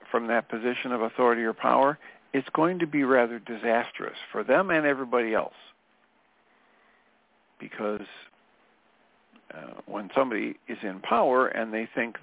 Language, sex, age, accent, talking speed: English, male, 50-69, American, 135 wpm